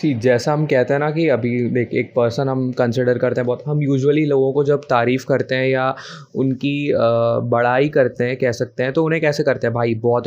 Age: 20-39